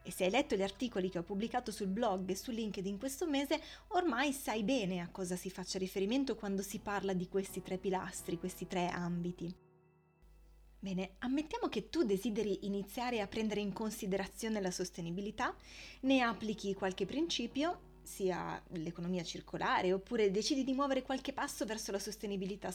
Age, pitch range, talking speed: 20-39, 185-255 Hz, 165 wpm